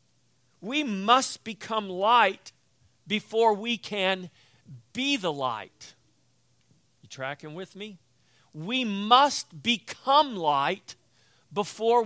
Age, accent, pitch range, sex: 50-69, American, 140-210 Hz, male